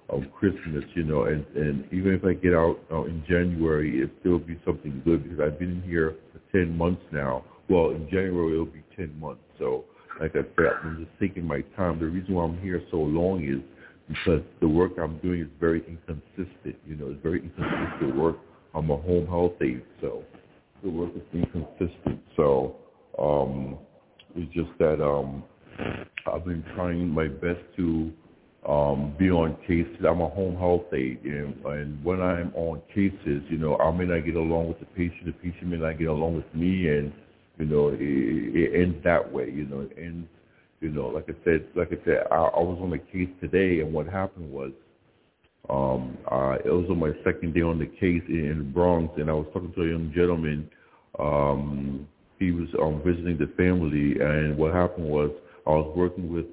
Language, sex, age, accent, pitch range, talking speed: English, male, 60-79, American, 75-90 Hz, 205 wpm